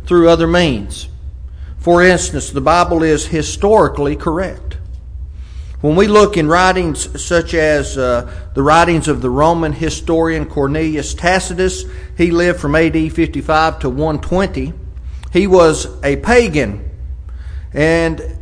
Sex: male